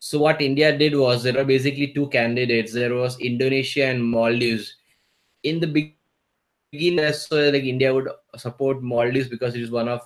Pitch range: 120-140 Hz